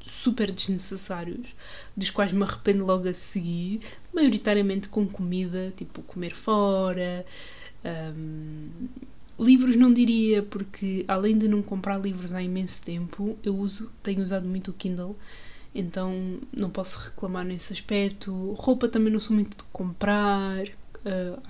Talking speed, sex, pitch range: 135 wpm, female, 180-205 Hz